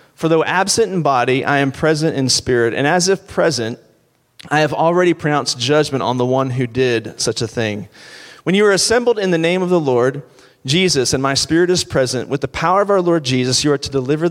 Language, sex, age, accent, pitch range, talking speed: English, male, 30-49, American, 125-160 Hz, 225 wpm